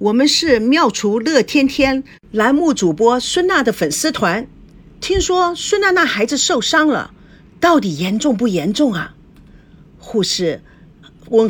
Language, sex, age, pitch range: Chinese, female, 50-69, 180-275 Hz